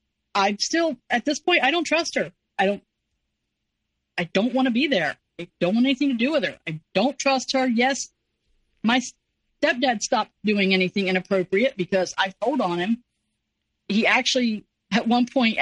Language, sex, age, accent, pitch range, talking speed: English, female, 40-59, American, 190-250 Hz, 175 wpm